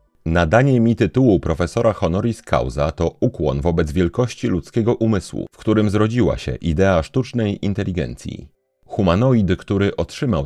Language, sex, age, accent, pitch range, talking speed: Polish, male, 40-59, native, 80-115 Hz, 125 wpm